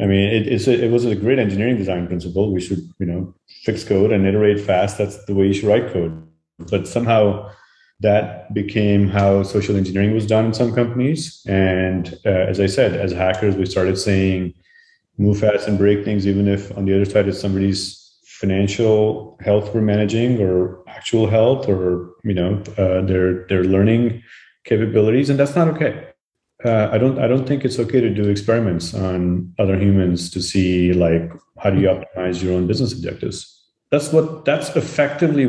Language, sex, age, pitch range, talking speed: English, male, 30-49, 95-110 Hz, 185 wpm